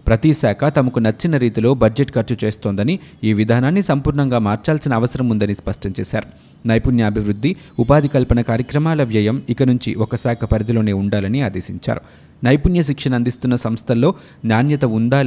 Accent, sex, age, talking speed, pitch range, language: native, male, 30-49, 135 wpm, 110-140 Hz, Telugu